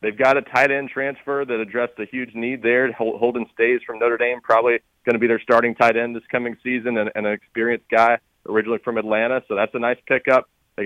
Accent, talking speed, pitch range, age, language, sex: American, 230 wpm, 110-125 Hz, 40-59, English, male